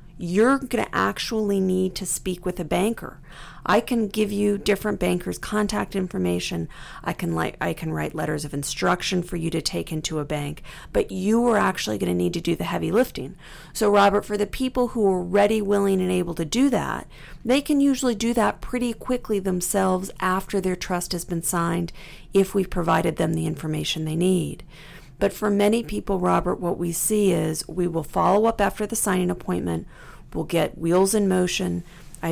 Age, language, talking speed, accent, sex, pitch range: 40-59, English, 195 wpm, American, female, 165-210 Hz